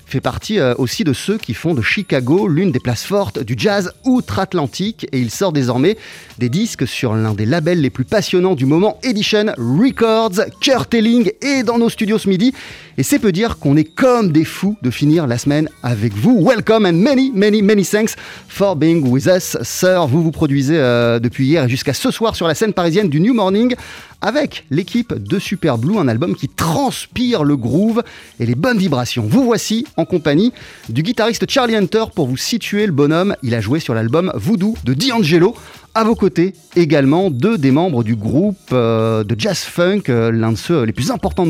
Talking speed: 200 wpm